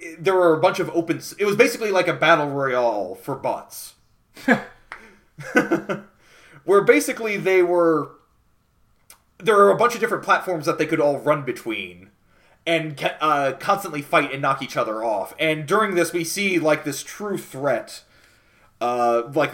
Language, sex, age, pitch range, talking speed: English, male, 30-49, 125-175 Hz, 160 wpm